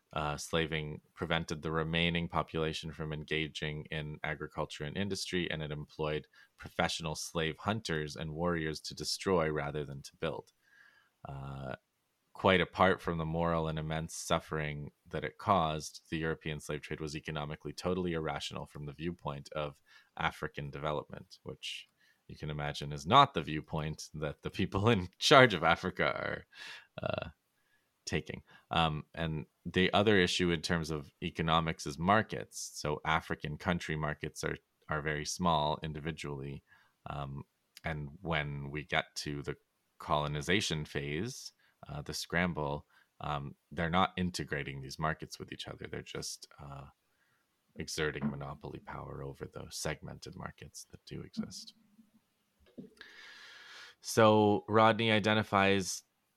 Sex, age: male, 30-49